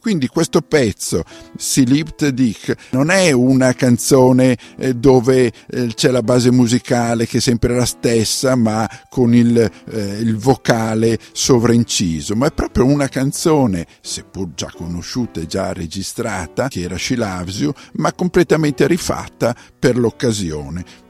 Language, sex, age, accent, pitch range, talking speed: Italian, male, 50-69, native, 100-130 Hz, 130 wpm